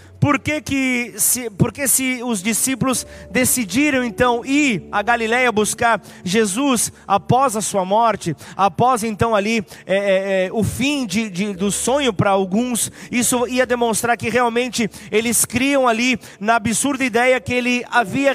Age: 30-49